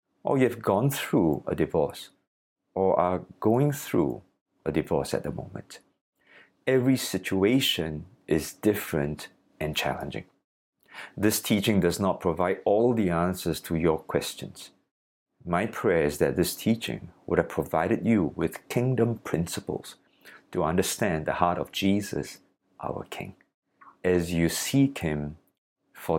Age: 50-69